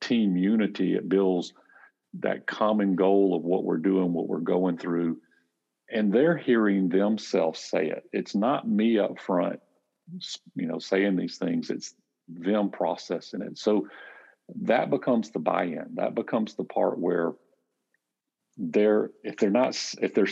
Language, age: English, 50-69